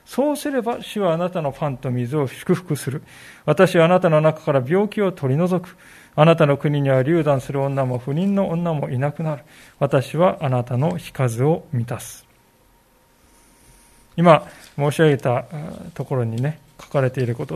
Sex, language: male, Japanese